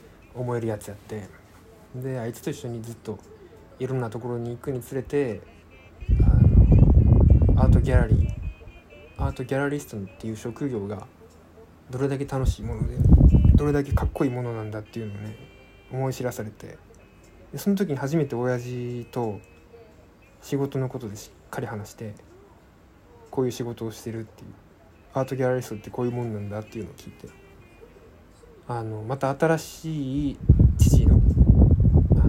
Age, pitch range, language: 20-39, 95-125 Hz, Japanese